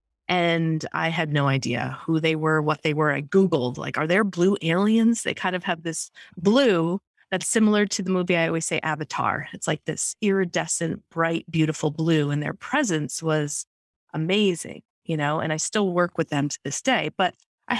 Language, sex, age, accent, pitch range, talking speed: English, female, 30-49, American, 160-195 Hz, 195 wpm